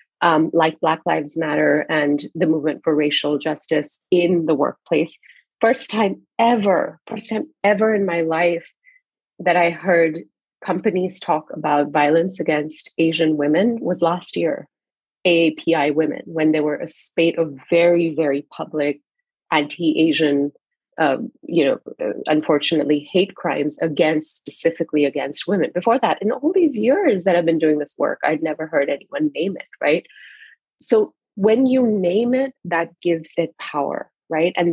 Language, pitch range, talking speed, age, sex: English, 155-190 Hz, 150 wpm, 30-49, female